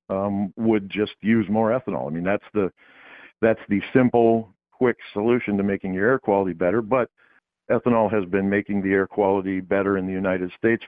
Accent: American